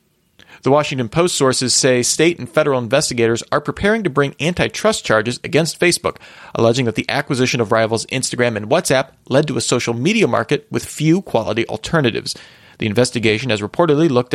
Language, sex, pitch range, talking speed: English, male, 115-150 Hz, 170 wpm